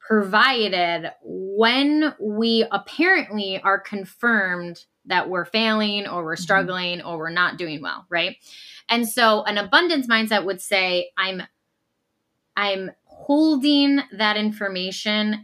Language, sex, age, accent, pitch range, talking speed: English, female, 10-29, American, 185-235 Hz, 115 wpm